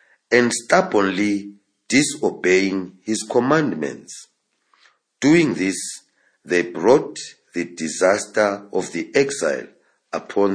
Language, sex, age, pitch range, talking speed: English, male, 50-69, 95-120 Hz, 85 wpm